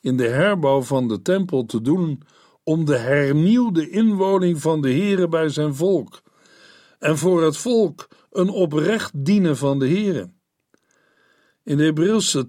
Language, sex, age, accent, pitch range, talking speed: Dutch, male, 50-69, Dutch, 135-180 Hz, 150 wpm